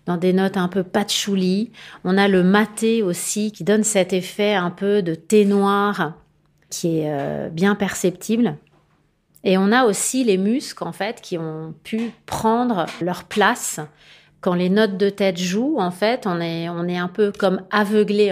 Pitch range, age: 170-210 Hz, 40-59